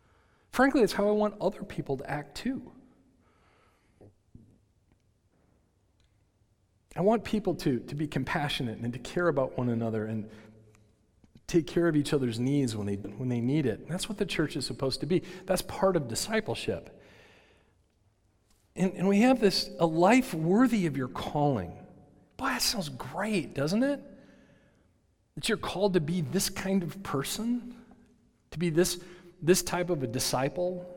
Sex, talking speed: male, 160 wpm